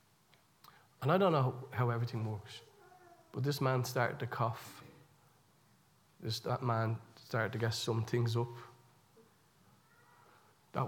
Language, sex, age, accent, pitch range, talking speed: English, male, 40-59, Irish, 120-185 Hz, 125 wpm